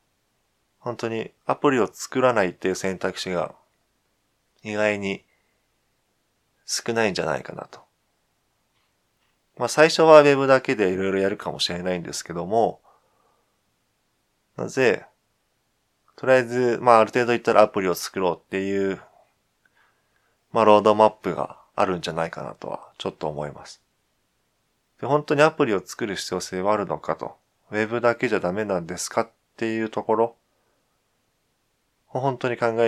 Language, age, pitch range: Japanese, 20-39, 90-115 Hz